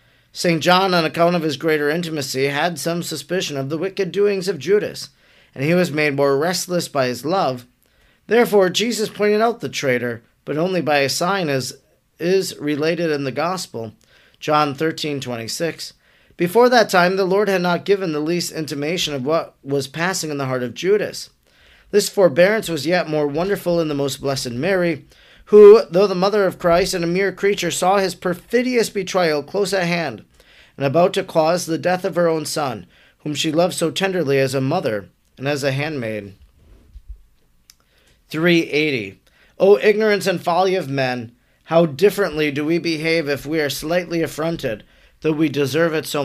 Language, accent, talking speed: English, American, 180 wpm